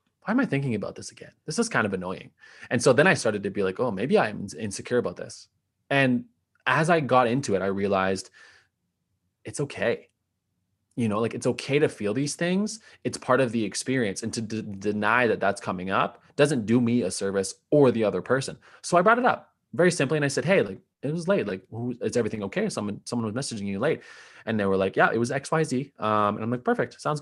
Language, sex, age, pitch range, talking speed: English, male, 20-39, 105-130 Hz, 240 wpm